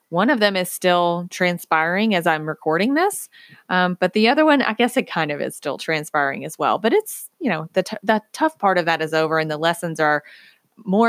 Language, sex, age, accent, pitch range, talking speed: English, female, 20-39, American, 160-195 Hz, 225 wpm